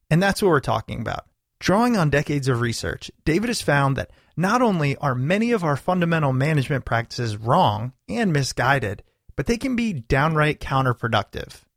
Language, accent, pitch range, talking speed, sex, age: English, American, 125-185 Hz, 170 wpm, male, 30-49